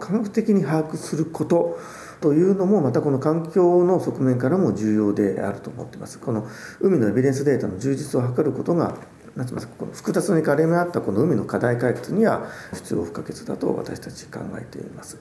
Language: Japanese